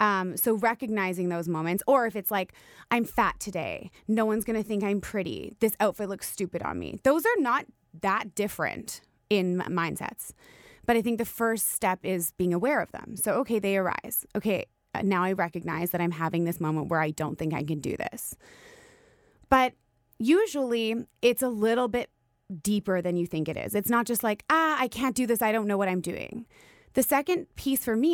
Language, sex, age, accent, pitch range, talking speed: English, female, 20-39, American, 175-235 Hz, 205 wpm